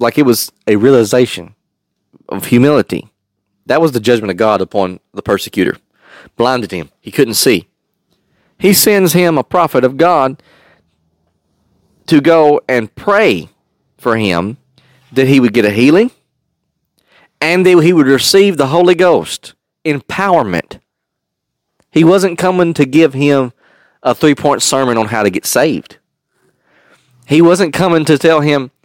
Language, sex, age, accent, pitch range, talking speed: English, male, 40-59, American, 105-150 Hz, 145 wpm